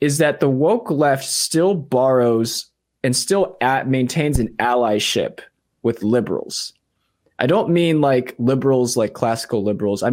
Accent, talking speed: American, 140 wpm